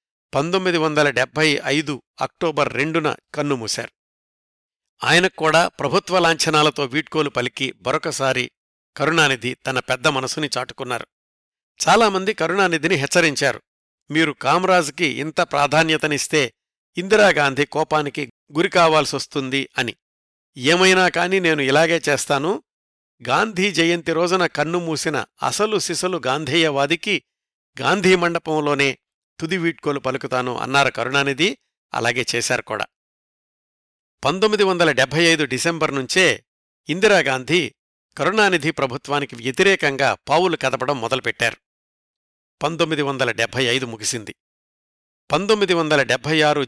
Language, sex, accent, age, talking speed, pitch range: Telugu, male, native, 50-69, 95 wpm, 135-170 Hz